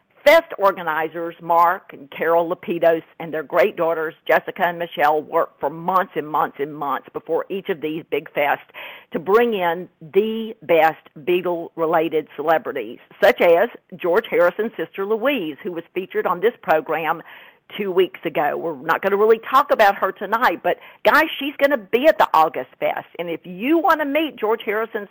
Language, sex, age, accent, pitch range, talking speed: English, female, 50-69, American, 165-275 Hz, 180 wpm